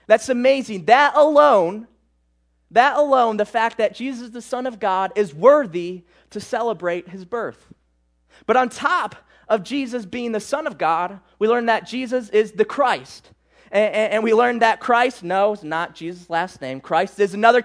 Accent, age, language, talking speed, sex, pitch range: American, 20-39, English, 175 wpm, male, 165-230 Hz